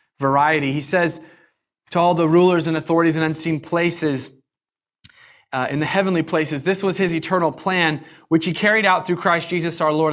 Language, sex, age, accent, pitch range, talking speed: English, male, 20-39, American, 160-210 Hz, 185 wpm